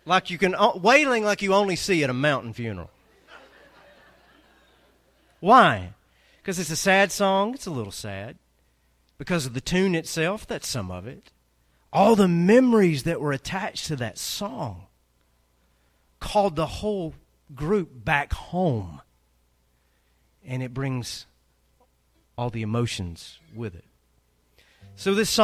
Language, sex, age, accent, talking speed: English, male, 40-59, American, 135 wpm